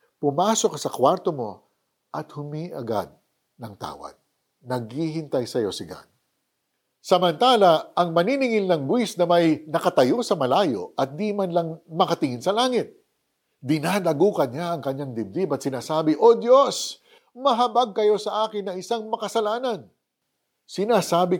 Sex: male